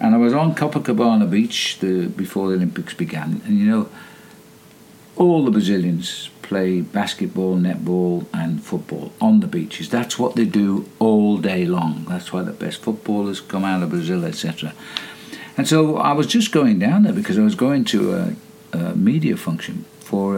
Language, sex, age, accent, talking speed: English, male, 60-79, British, 175 wpm